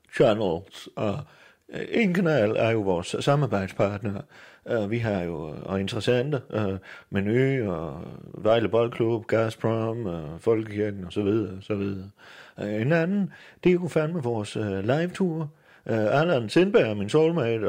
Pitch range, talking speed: 105-150 Hz, 130 wpm